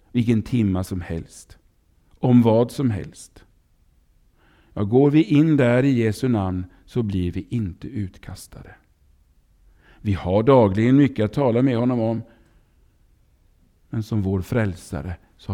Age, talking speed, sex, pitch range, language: 50-69, 135 wpm, male, 90-120 Hz, Swedish